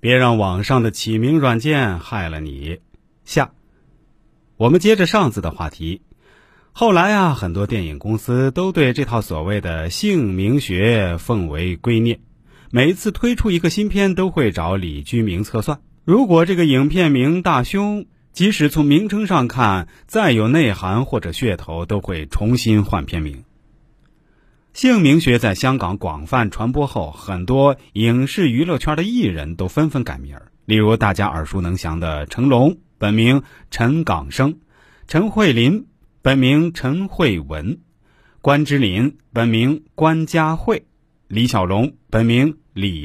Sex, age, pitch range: male, 30-49, 100-160 Hz